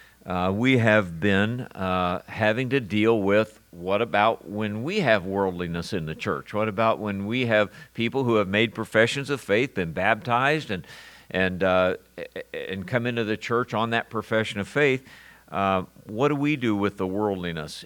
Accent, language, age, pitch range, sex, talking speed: American, English, 60-79, 95-120 Hz, male, 180 wpm